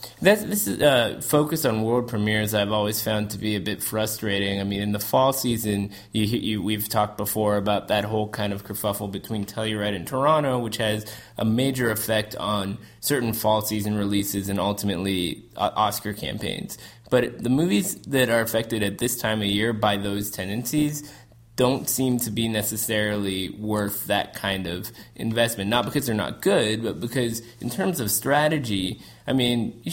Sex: male